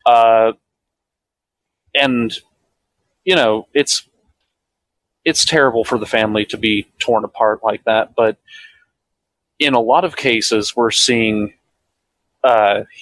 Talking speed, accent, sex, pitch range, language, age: 115 wpm, American, male, 105-125 Hz, English, 30-49